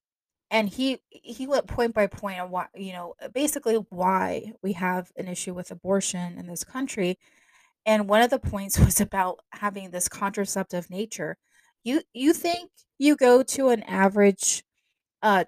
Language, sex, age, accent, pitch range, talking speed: English, female, 20-39, American, 180-220 Hz, 165 wpm